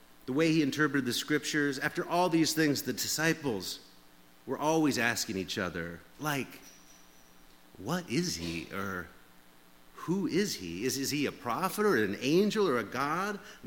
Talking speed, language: 160 wpm, English